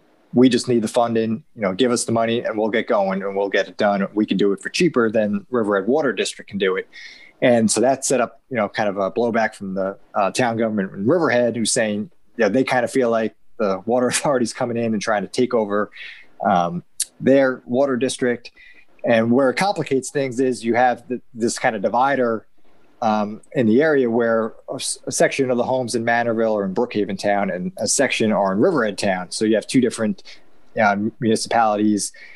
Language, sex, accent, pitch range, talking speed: English, male, American, 100-120 Hz, 220 wpm